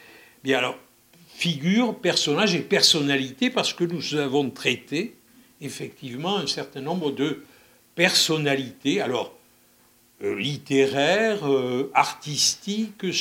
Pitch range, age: 130-170 Hz, 60-79